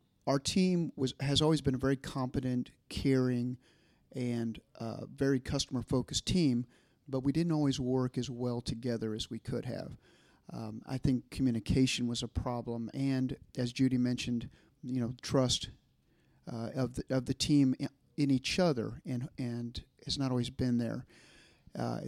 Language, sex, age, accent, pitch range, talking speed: English, male, 40-59, American, 120-135 Hz, 165 wpm